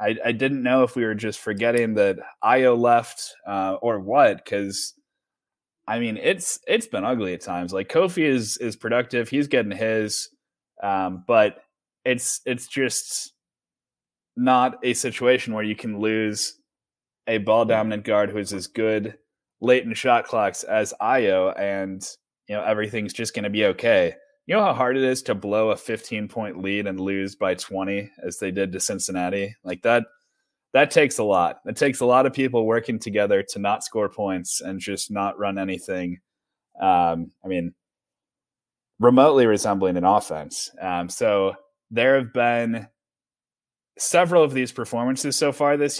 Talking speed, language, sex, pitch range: 165 wpm, English, male, 100-125 Hz